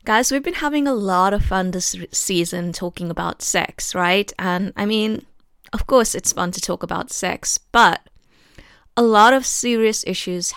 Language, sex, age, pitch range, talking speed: English, female, 20-39, 175-225 Hz, 175 wpm